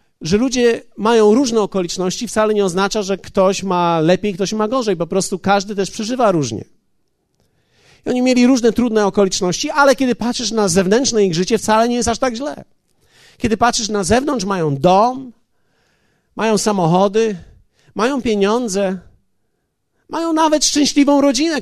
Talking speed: 150 wpm